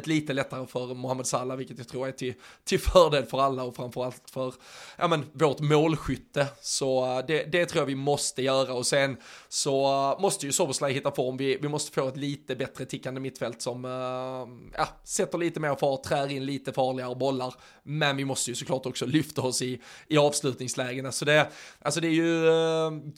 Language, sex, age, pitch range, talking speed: Swedish, male, 20-39, 130-150 Hz, 200 wpm